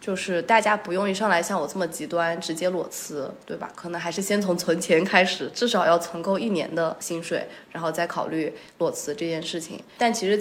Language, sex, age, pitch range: Chinese, female, 20-39, 170-205 Hz